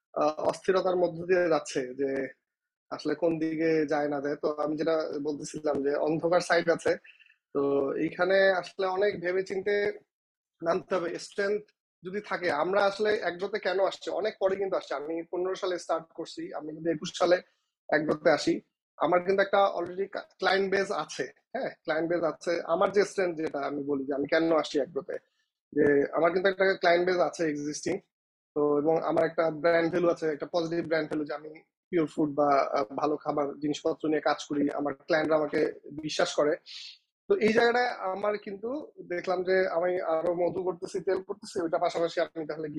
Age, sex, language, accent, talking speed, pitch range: 30-49, male, Bengali, native, 120 wpm, 155-190 Hz